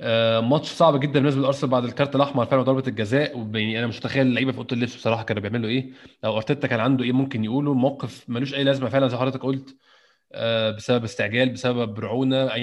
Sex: male